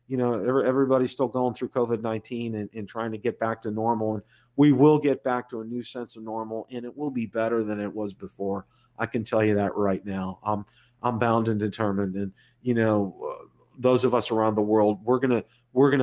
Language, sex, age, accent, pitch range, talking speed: English, male, 40-59, American, 110-130 Hz, 230 wpm